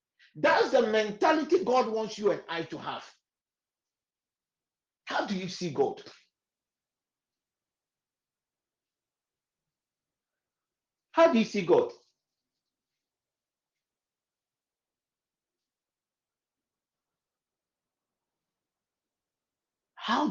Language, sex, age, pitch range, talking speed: English, male, 50-69, 205-330 Hz, 60 wpm